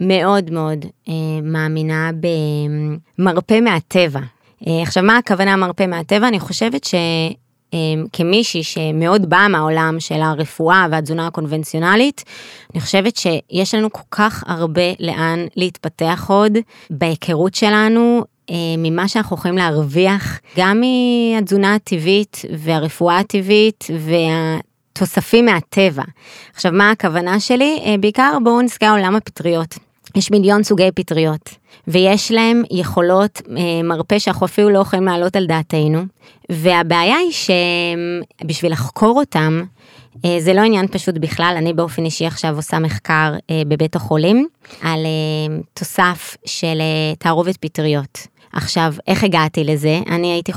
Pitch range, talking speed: 160-195 Hz, 115 wpm